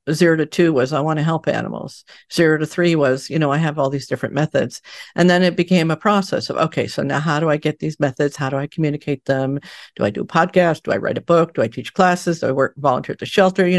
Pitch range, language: 145-185 Hz, English